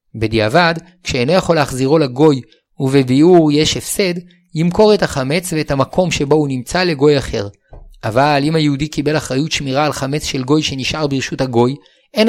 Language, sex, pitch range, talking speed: Hebrew, male, 140-175 Hz, 155 wpm